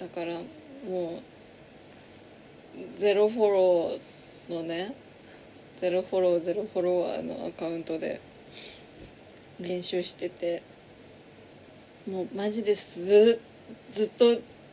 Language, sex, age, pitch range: Japanese, female, 20-39, 180-240 Hz